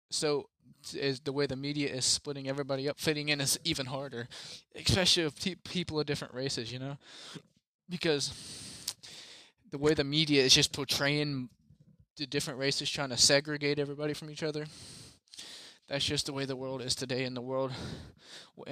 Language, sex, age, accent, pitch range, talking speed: English, male, 20-39, American, 130-150 Hz, 175 wpm